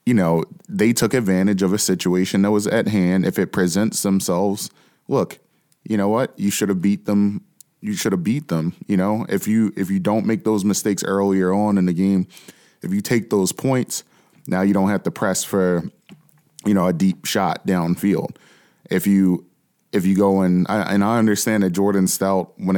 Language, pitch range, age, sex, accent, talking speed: English, 90-105 Hz, 20-39, male, American, 200 wpm